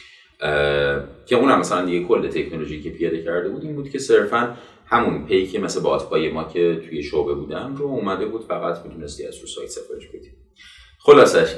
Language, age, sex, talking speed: Persian, 30-49, male, 180 wpm